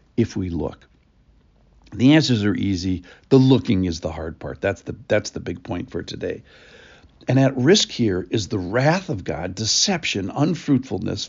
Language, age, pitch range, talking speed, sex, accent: English, 60-79, 95-130 Hz, 170 wpm, male, American